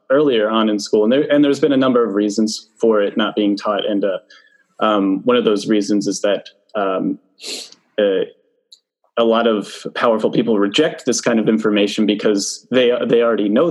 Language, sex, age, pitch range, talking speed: English, male, 20-39, 105-130 Hz, 195 wpm